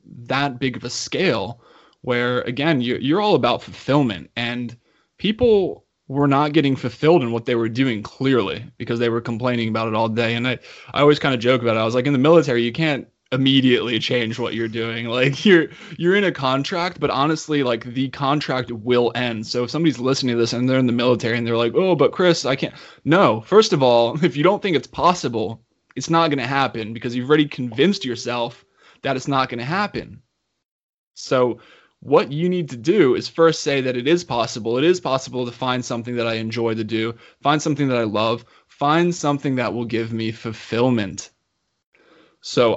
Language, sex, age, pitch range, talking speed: English, male, 20-39, 115-145 Hz, 210 wpm